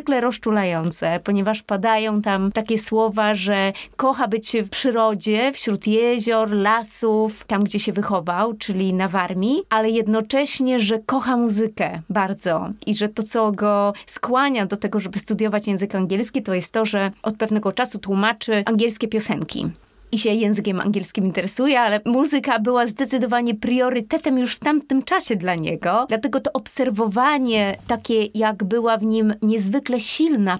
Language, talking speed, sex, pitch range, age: Polish, 150 wpm, female, 200-240 Hz, 30-49